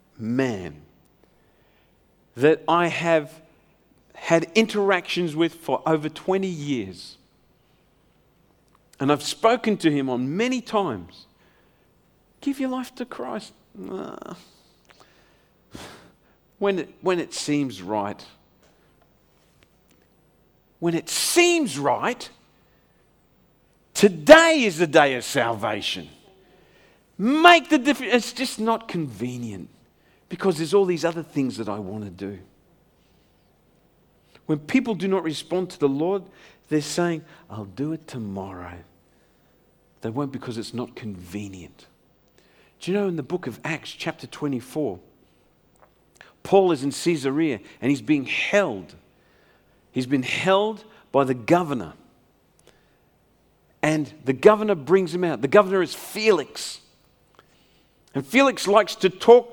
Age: 50-69